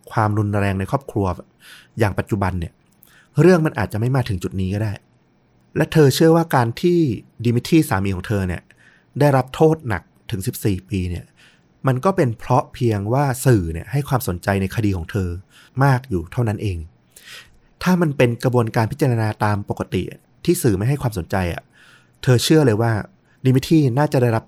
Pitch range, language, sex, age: 95-130 Hz, Thai, male, 30-49